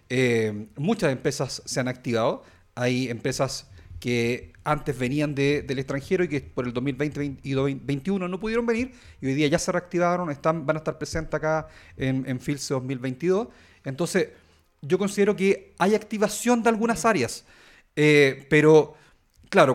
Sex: male